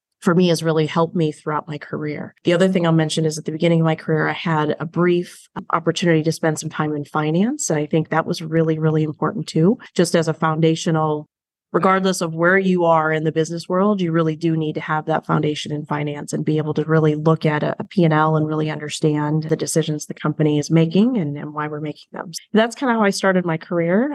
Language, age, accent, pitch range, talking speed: English, 30-49, American, 160-185 Hz, 240 wpm